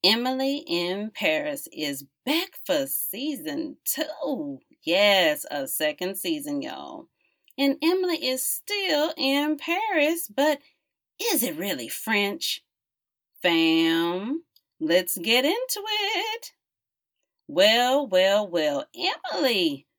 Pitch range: 220-315 Hz